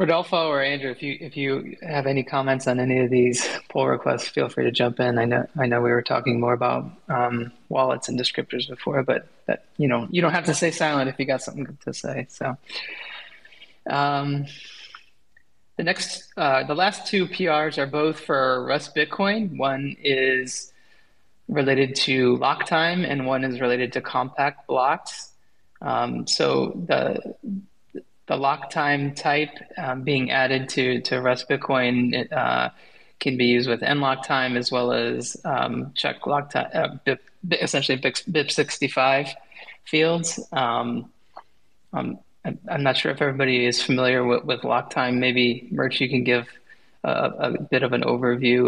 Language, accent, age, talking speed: English, American, 20-39, 170 wpm